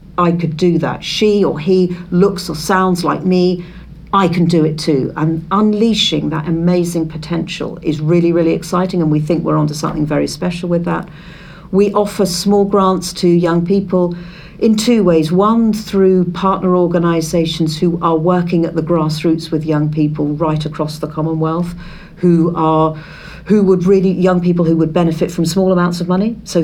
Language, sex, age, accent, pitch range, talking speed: English, female, 50-69, British, 160-185 Hz, 180 wpm